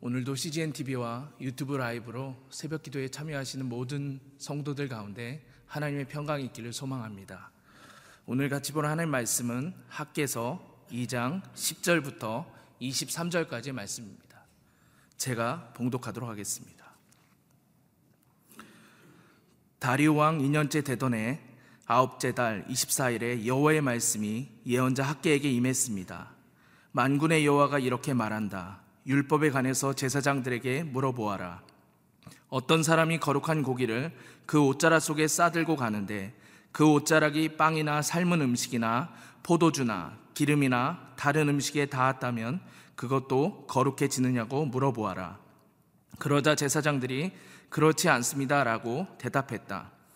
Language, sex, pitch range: Korean, male, 120-150 Hz